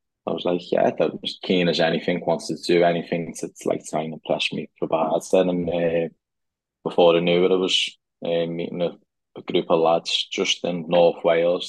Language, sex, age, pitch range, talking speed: English, male, 20-39, 80-85 Hz, 205 wpm